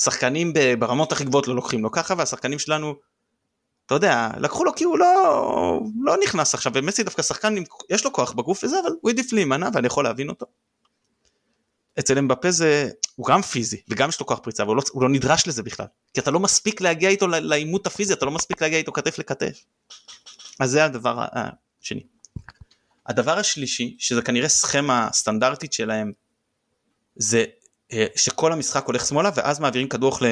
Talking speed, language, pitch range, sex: 175 wpm, Hebrew, 120-160 Hz, male